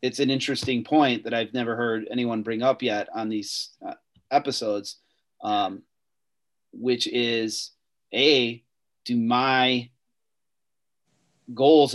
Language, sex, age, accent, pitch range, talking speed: English, male, 30-49, American, 110-130 Hz, 110 wpm